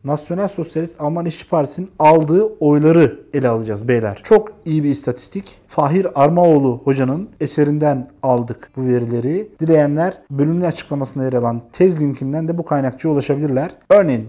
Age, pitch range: 50-69, 135-190 Hz